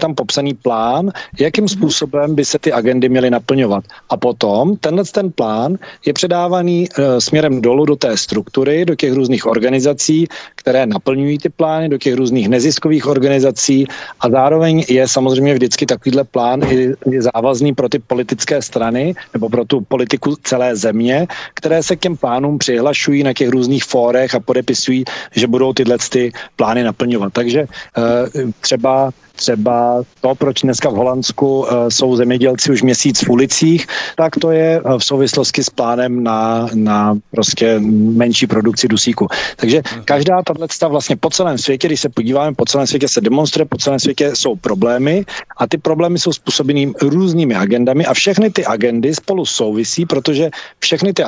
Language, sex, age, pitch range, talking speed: Czech, male, 40-59, 125-155 Hz, 165 wpm